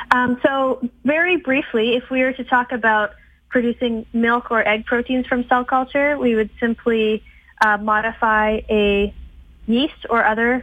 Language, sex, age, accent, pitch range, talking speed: English, female, 20-39, American, 205-240 Hz, 150 wpm